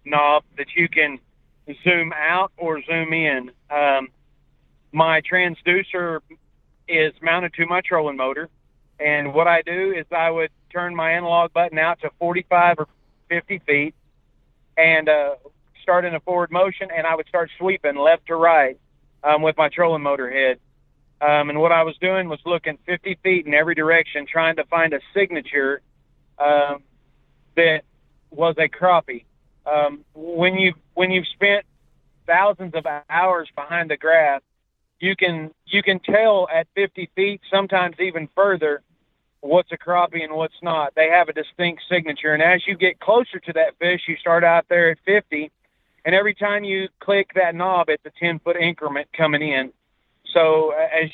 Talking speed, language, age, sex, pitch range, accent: 170 wpm, English, 40-59, male, 150-180 Hz, American